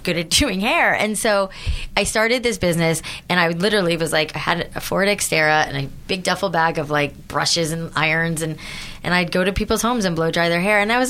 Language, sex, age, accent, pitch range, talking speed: English, female, 20-39, American, 150-195 Hz, 245 wpm